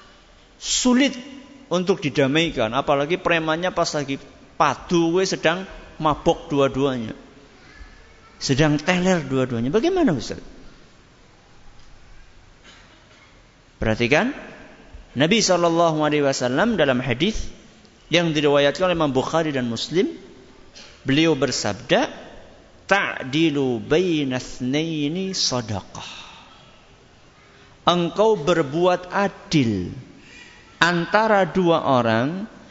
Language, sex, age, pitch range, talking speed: Malay, male, 50-69, 135-195 Hz, 70 wpm